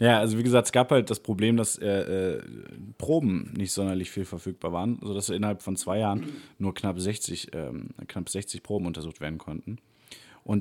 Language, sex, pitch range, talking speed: German, male, 90-110 Hz, 180 wpm